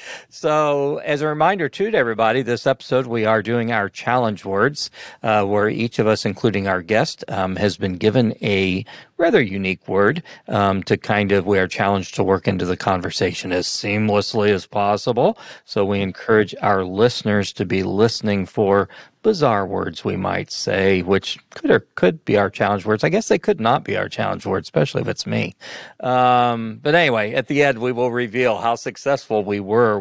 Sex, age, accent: male, 40-59, American